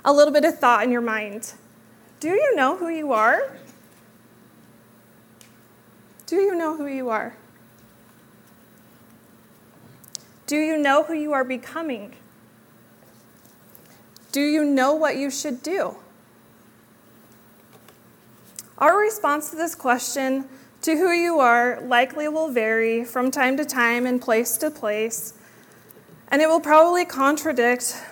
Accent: American